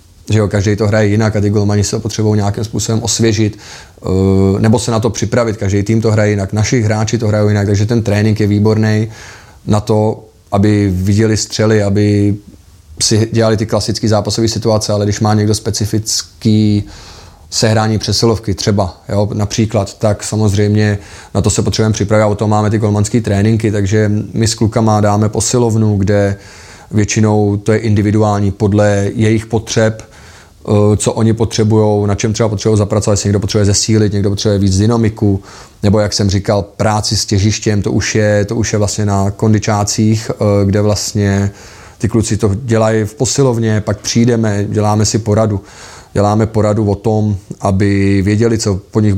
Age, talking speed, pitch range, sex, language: 20-39, 165 wpm, 100-110 Hz, male, Czech